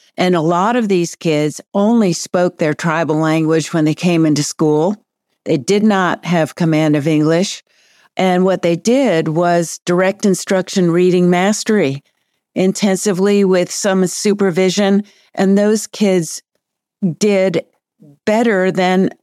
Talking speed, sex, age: 130 wpm, female, 50-69